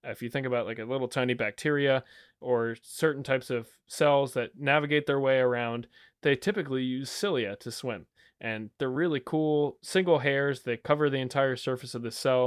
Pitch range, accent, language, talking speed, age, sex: 115-135 Hz, American, English, 190 wpm, 20-39, male